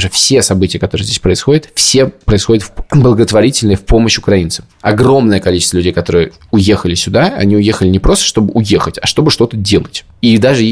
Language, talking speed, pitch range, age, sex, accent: Russian, 170 wpm, 90-110 Hz, 20-39, male, native